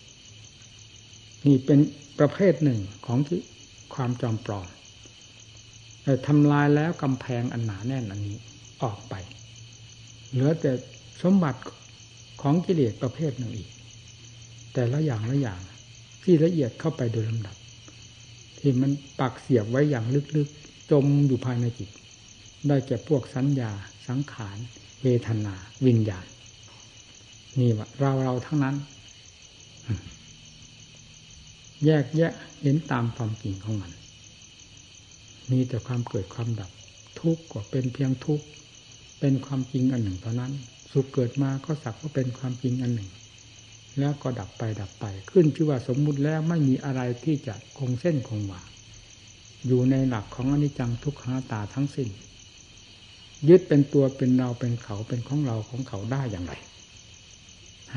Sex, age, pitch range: male, 60-79, 110-135 Hz